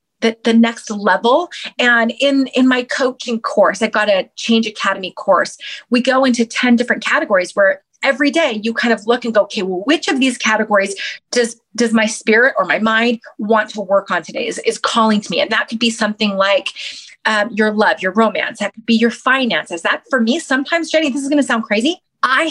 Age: 30-49